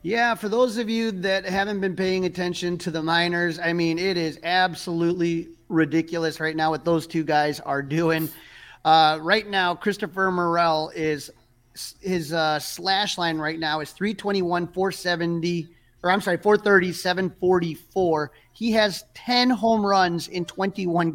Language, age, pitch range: English, 30-49, 160-190 Hz